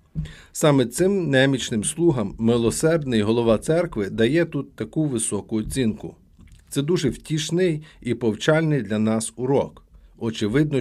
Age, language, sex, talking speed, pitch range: 50-69, Ukrainian, male, 115 wpm, 110-145 Hz